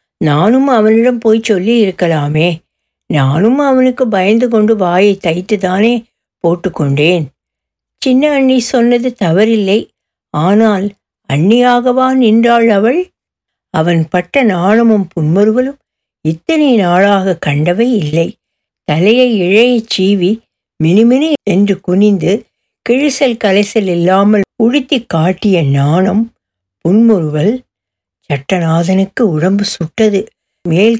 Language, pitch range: Tamil, 170-230 Hz